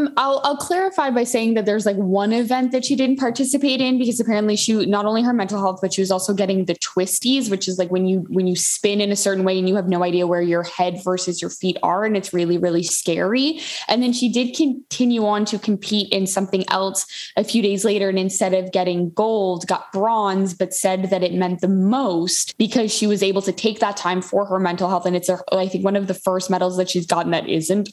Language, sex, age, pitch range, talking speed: English, female, 10-29, 185-230 Hz, 245 wpm